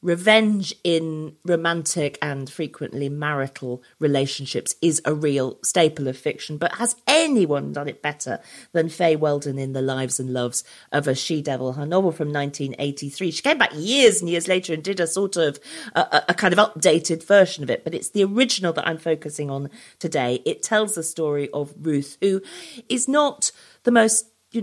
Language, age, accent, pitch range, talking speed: English, 40-59, British, 145-205 Hz, 185 wpm